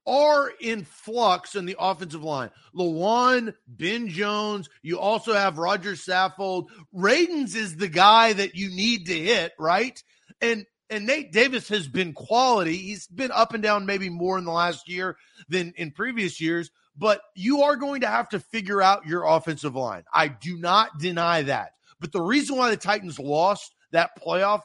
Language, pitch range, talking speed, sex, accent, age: English, 170-235 Hz, 180 wpm, male, American, 30-49